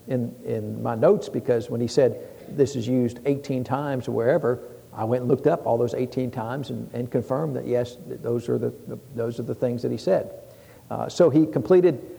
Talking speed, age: 220 wpm, 60-79